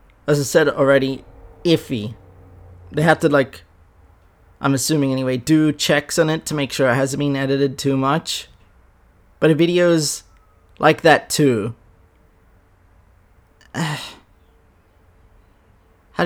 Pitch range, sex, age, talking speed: 90-155 Hz, male, 30-49, 120 wpm